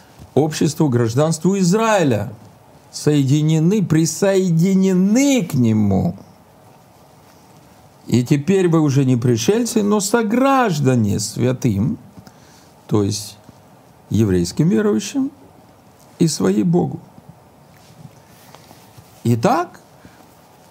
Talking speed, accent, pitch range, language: 70 wpm, native, 120-185 Hz, Russian